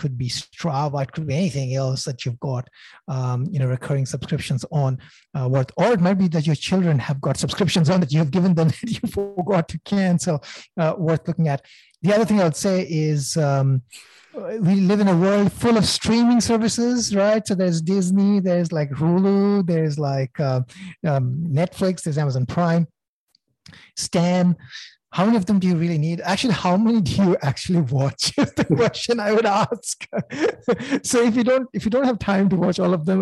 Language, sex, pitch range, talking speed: English, male, 150-195 Hz, 200 wpm